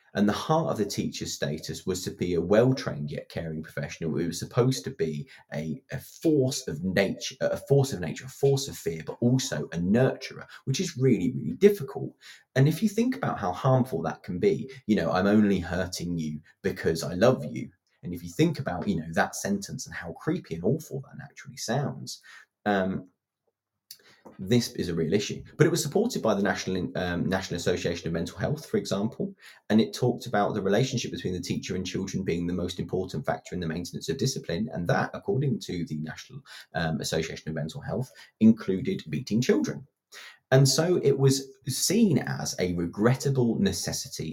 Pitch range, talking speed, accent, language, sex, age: 85-140 Hz, 195 wpm, British, English, male, 30-49